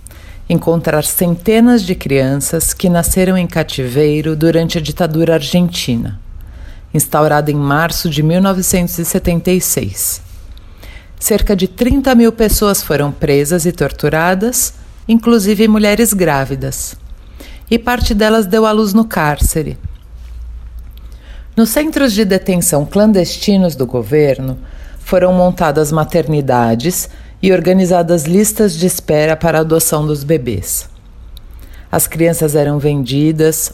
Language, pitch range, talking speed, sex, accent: Portuguese, 140-190 Hz, 110 wpm, female, Brazilian